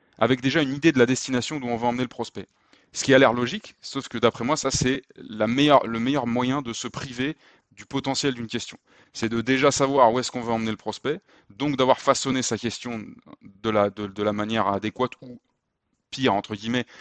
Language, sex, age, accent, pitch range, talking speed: French, male, 20-39, French, 105-130 Hz, 220 wpm